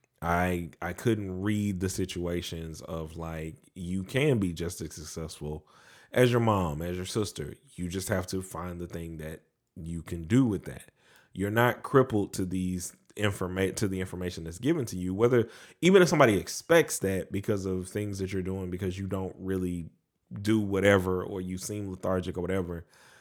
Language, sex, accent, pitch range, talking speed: English, male, American, 90-105 Hz, 180 wpm